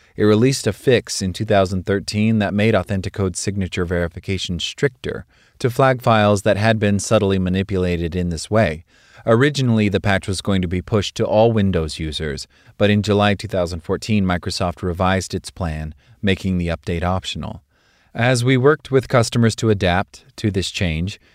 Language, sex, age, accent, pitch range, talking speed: English, male, 30-49, American, 90-110 Hz, 160 wpm